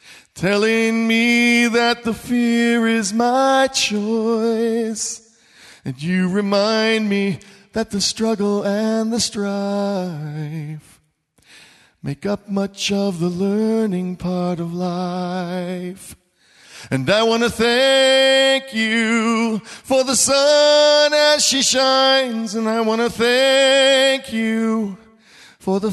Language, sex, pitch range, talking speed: English, male, 200-265 Hz, 110 wpm